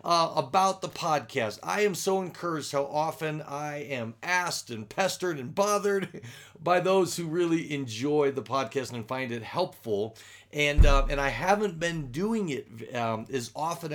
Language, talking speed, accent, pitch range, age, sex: English, 170 wpm, American, 135-180 Hz, 40-59, male